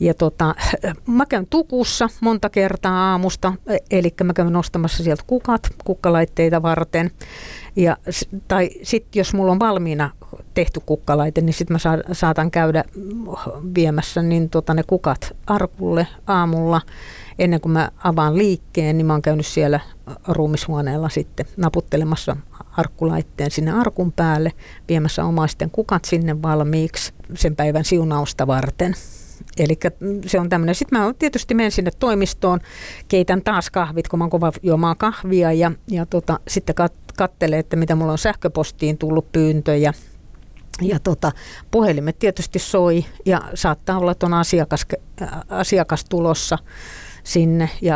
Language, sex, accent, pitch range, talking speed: Finnish, female, native, 160-185 Hz, 135 wpm